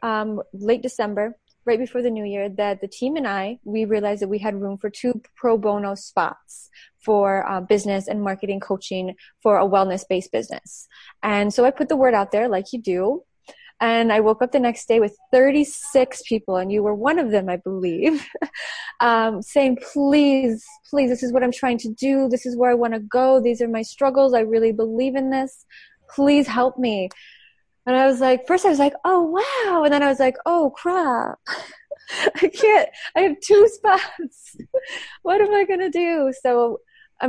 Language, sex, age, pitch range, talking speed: English, female, 20-39, 205-275 Hz, 200 wpm